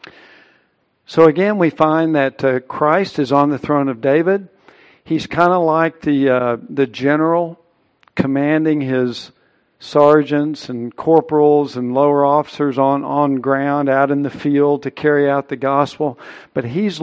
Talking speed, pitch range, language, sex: 150 wpm, 130-155 Hz, English, male